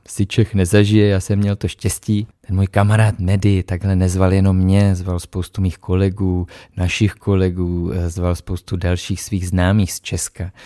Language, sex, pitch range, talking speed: Czech, male, 95-110 Hz, 165 wpm